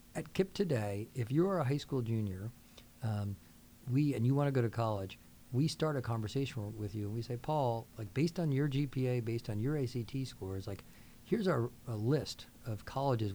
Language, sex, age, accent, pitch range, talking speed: English, male, 40-59, American, 105-130 Hz, 200 wpm